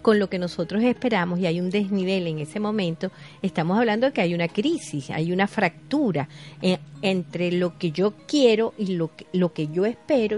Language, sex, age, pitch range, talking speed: Spanish, female, 40-59, 155-205 Hz, 190 wpm